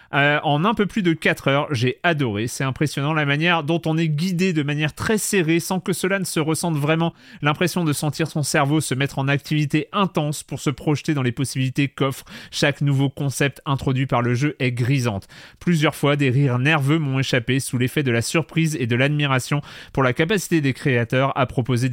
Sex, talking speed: male, 210 wpm